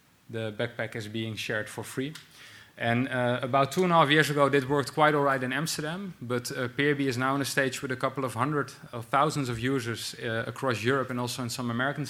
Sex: male